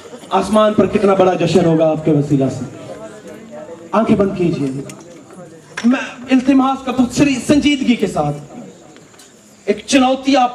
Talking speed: 130 wpm